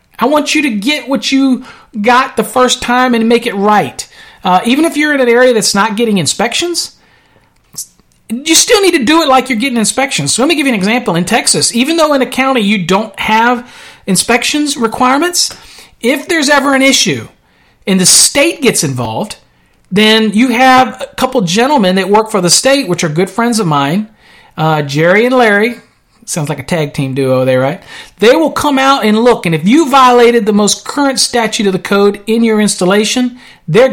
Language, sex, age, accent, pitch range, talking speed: English, male, 40-59, American, 180-250 Hz, 205 wpm